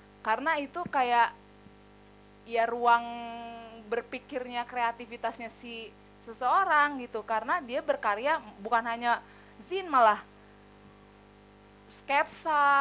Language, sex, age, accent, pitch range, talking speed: English, female, 20-39, Indonesian, 215-275 Hz, 85 wpm